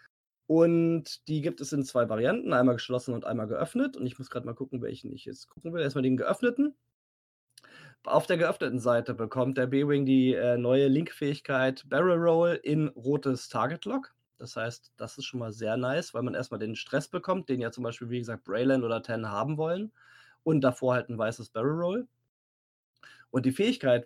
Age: 20-39